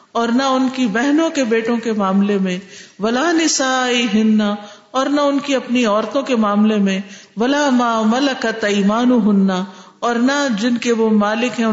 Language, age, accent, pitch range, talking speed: English, 50-69, Indian, 195-250 Hz, 165 wpm